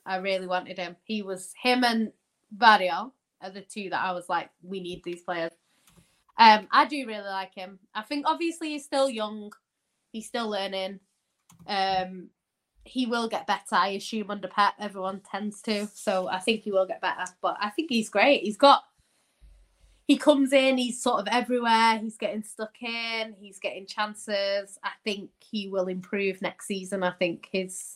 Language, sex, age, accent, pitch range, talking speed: English, female, 20-39, British, 185-230 Hz, 180 wpm